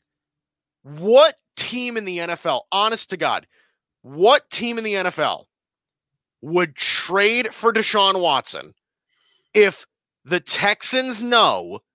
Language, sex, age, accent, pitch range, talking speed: English, male, 30-49, American, 165-235 Hz, 110 wpm